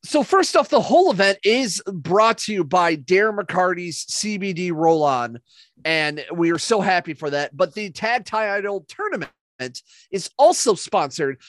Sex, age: male, 30-49